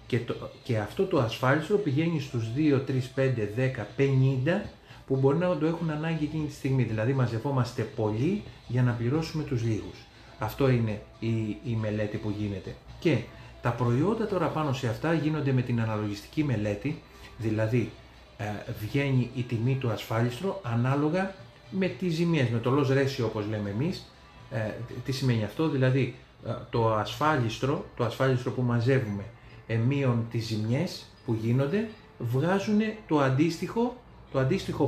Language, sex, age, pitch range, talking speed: Greek, male, 30-49, 115-155 Hz, 145 wpm